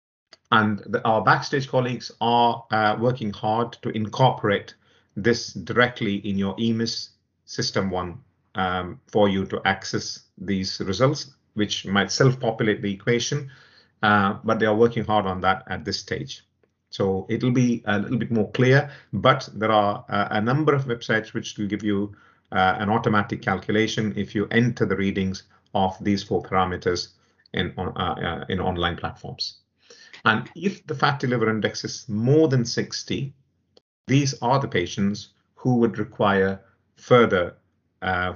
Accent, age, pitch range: Indian, 50-69, 100-120 Hz